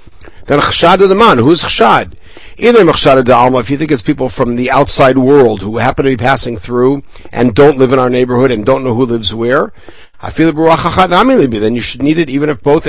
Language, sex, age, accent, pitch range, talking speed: English, male, 60-79, American, 130-180 Hz, 185 wpm